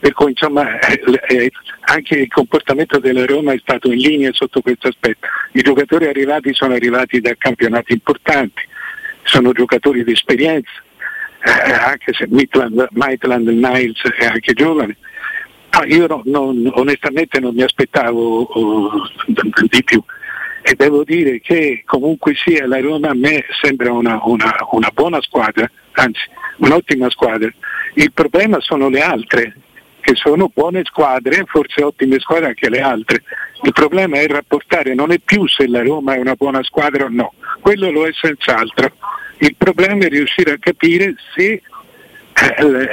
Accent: native